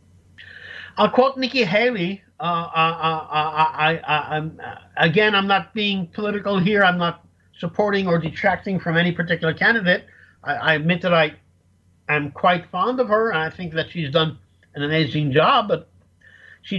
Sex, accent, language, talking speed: male, American, English, 160 wpm